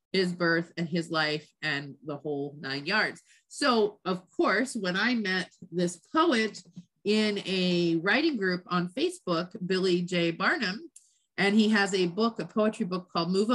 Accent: American